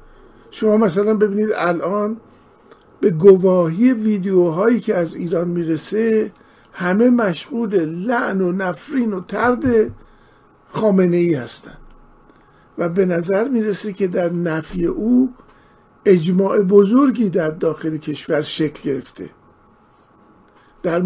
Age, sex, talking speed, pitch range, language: 50-69, male, 105 wpm, 165-220 Hz, Persian